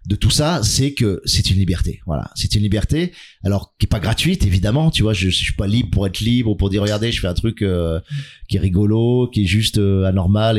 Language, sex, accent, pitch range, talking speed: French, male, French, 95-120 Hz, 255 wpm